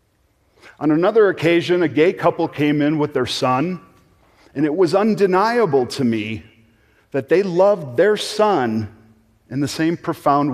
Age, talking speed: 40-59, 150 wpm